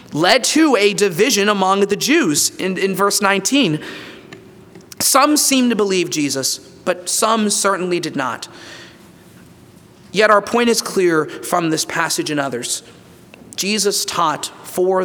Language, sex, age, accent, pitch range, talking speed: English, male, 30-49, American, 175-225 Hz, 135 wpm